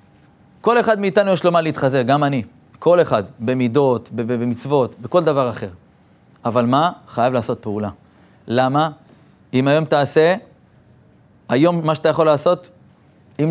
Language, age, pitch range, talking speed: Hebrew, 30-49, 130-160 Hz, 140 wpm